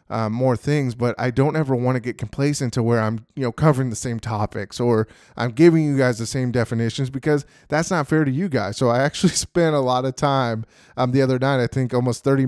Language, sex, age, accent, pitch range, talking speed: English, male, 20-39, American, 120-145 Hz, 245 wpm